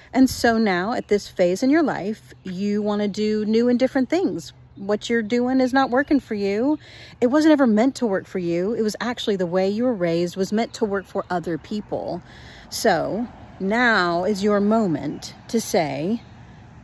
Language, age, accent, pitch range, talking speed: English, 40-59, American, 180-255 Hz, 195 wpm